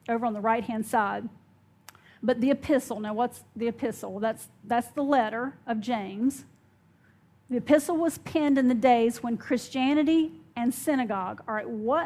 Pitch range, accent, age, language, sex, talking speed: 225-280 Hz, American, 40-59, English, female, 165 wpm